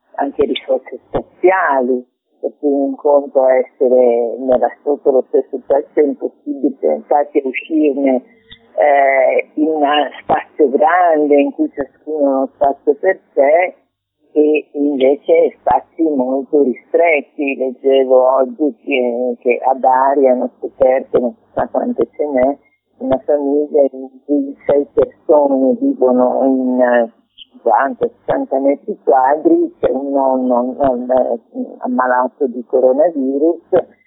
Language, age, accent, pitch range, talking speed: Italian, 50-69, native, 130-165 Hz, 120 wpm